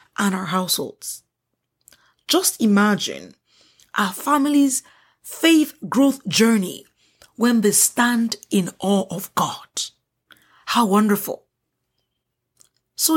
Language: English